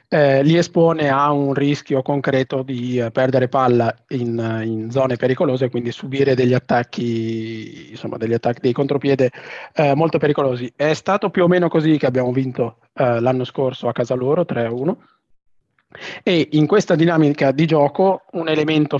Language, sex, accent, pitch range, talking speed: Italian, male, native, 125-150 Hz, 160 wpm